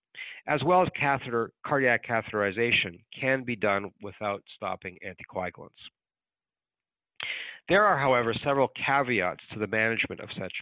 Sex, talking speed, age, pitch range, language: male, 120 wpm, 50-69, 105-130 Hz, English